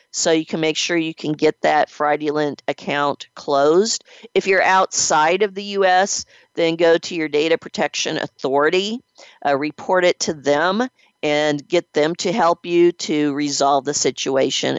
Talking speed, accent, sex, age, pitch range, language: 160 wpm, American, female, 50-69, 150-190 Hz, English